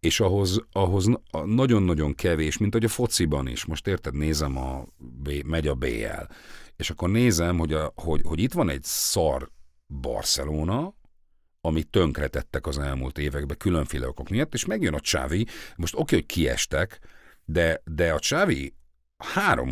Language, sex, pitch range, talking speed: Hungarian, male, 75-105 Hz, 155 wpm